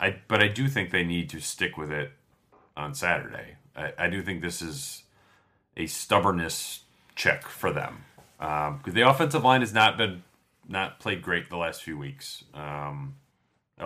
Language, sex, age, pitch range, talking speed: English, male, 30-49, 75-100 Hz, 175 wpm